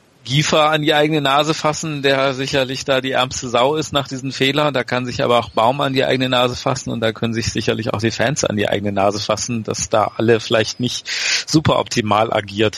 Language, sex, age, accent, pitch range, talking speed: German, male, 40-59, German, 115-130 Hz, 225 wpm